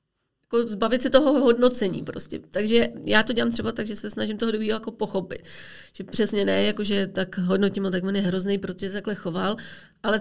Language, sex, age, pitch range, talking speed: Czech, female, 30-49, 200-230 Hz, 200 wpm